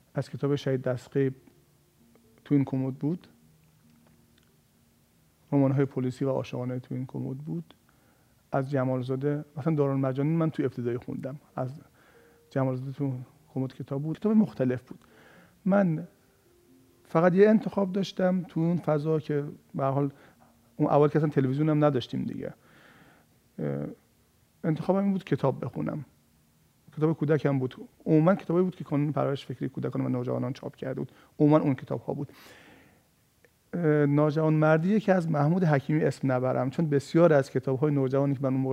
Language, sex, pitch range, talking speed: Persian, male, 130-155 Hz, 145 wpm